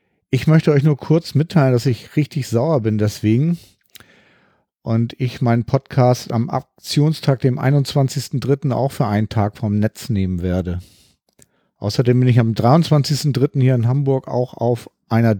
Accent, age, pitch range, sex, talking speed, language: German, 50-69, 115-140 Hz, male, 150 wpm, German